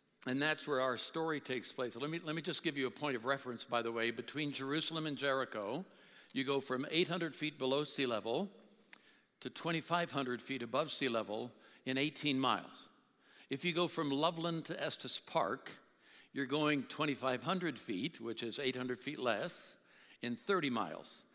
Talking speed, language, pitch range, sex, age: 175 wpm, English, 125-150 Hz, male, 60-79